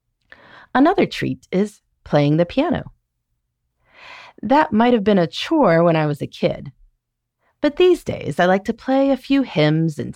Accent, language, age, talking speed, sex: American, English, 30-49, 165 wpm, female